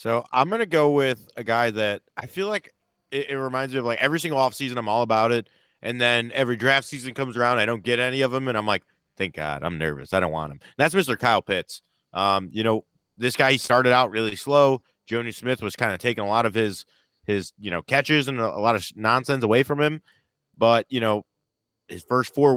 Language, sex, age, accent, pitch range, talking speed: English, male, 30-49, American, 110-135 Hz, 250 wpm